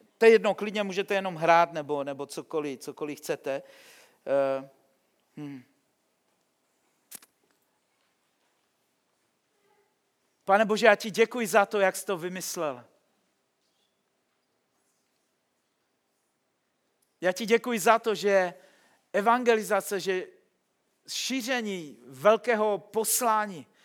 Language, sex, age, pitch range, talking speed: Czech, male, 40-59, 190-245 Hz, 90 wpm